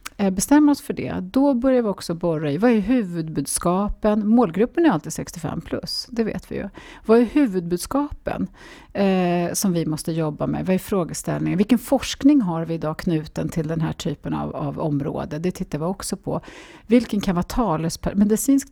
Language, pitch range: Swedish, 160-230 Hz